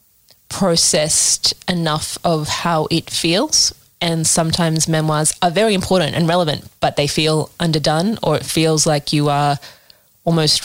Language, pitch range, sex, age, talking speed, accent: English, 155-180 Hz, female, 20-39, 140 wpm, Australian